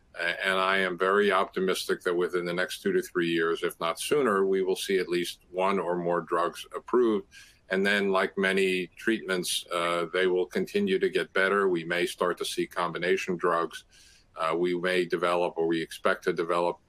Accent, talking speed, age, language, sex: American, 190 wpm, 50-69, English, male